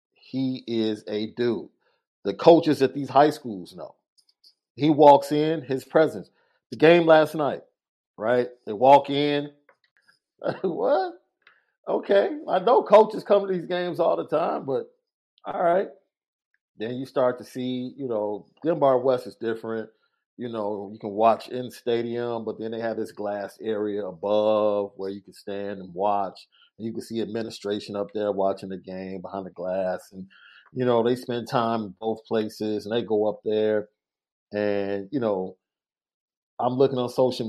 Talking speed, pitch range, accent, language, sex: 165 wpm, 105-130 Hz, American, English, male